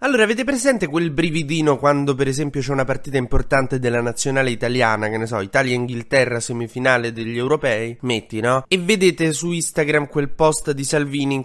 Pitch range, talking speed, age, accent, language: 115-150 Hz, 175 wpm, 20-39, native, Italian